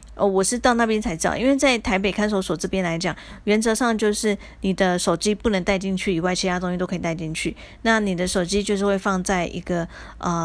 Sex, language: female, Chinese